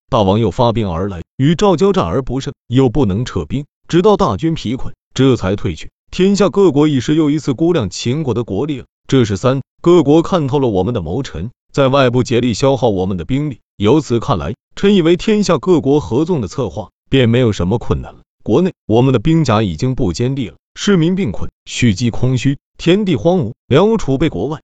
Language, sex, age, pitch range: Chinese, male, 30-49, 115-160 Hz